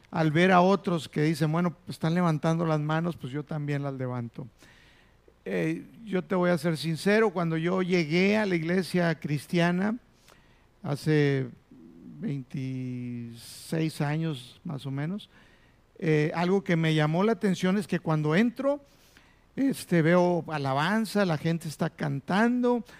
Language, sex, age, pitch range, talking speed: Spanish, male, 50-69, 155-185 Hz, 140 wpm